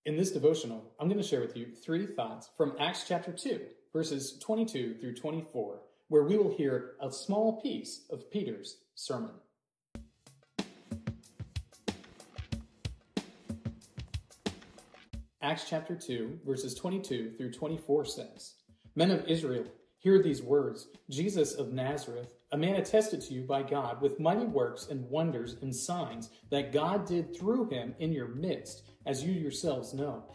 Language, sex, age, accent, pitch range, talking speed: English, male, 40-59, American, 130-180 Hz, 140 wpm